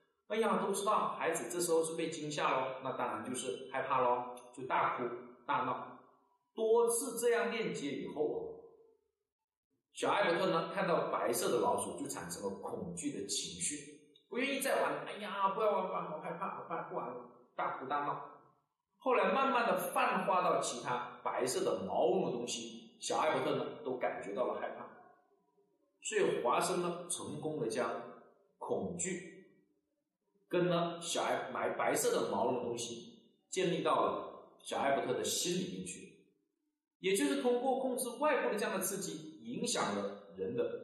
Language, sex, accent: Chinese, male, native